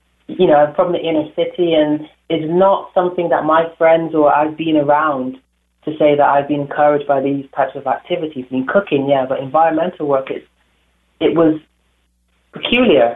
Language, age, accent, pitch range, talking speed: English, 30-49, British, 145-170 Hz, 185 wpm